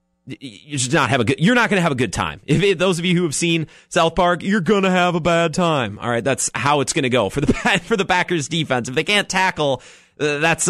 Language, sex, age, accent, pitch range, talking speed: English, male, 30-49, American, 125-170 Hz, 280 wpm